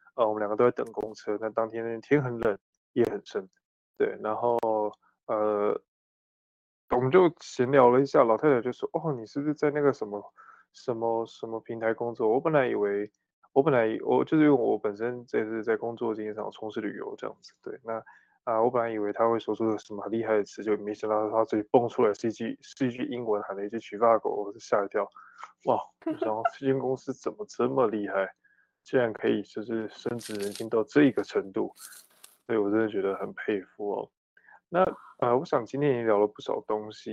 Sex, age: male, 20-39